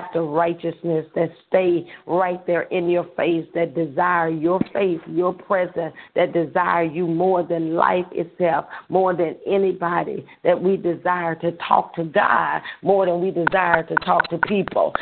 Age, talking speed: 40-59, 160 wpm